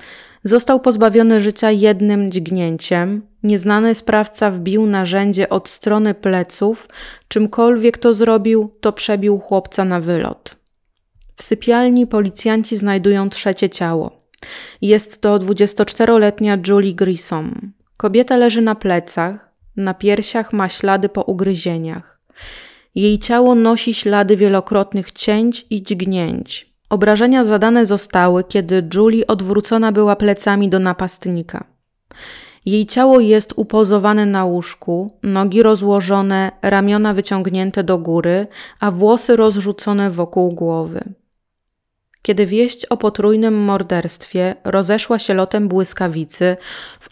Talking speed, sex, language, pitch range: 110 wpm, female, Polish, 190-220 Hz